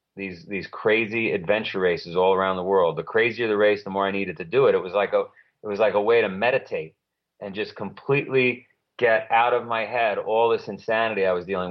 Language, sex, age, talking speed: English, male, 30-49, 230 wpm